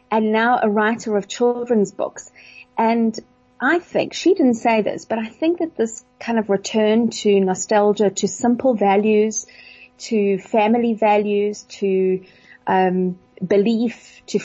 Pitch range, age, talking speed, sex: 195-235 Hz, 30-49, 140 wpm, female